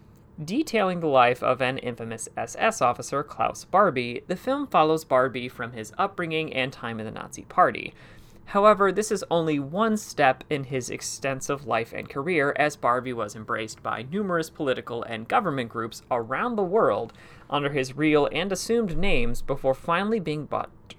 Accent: American